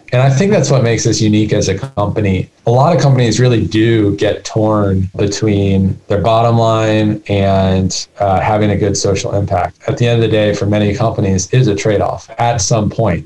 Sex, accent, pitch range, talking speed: male, American, 100-120 Hz, 210 wpm